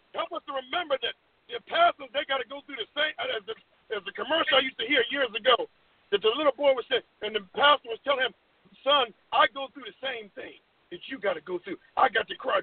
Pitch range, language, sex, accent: 250-340 Hz, English, male, American